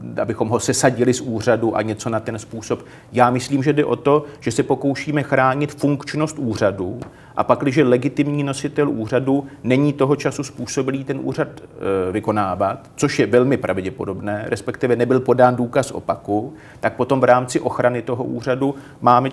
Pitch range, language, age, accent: 125-140 Hz, Czech, 40-59, native